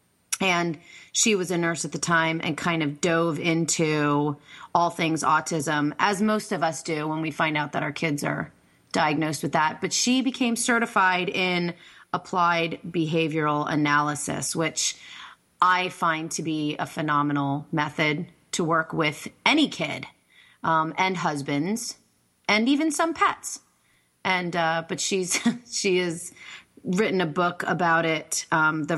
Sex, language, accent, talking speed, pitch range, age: female, English, American, 150 wpm, 155-190 Hz, 30-49